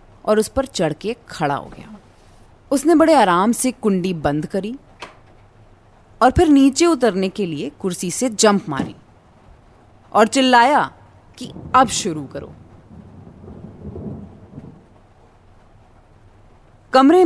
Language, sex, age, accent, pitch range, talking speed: Hindi, female, 20-39, native, 145-245 Hz, 110 wpm